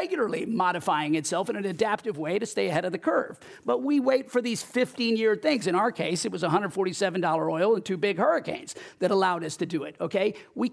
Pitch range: 185-235 Hz